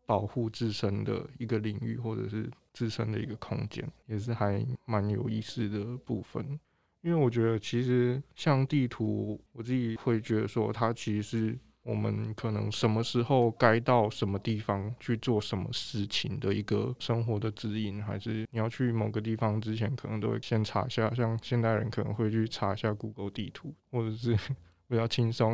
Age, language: 20-39, Chinese